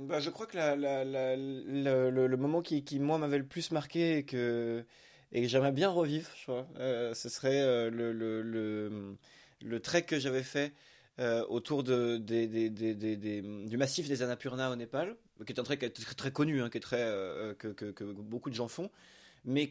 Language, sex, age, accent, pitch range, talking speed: French, male, 20-39, French, 115-150 Hz, 225 wpm